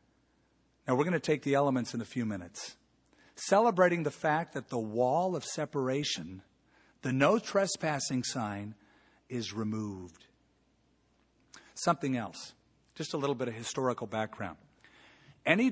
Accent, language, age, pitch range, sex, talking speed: American, English, 50-69, 115-150 Hz, male, 135 wpm